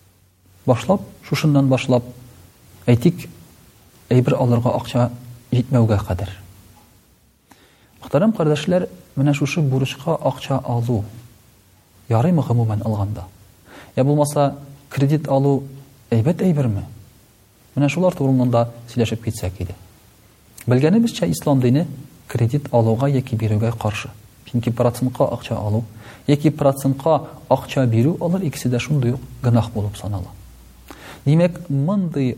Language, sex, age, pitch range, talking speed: Russian, male, 40-59, 110-140 Hz, 90 wpm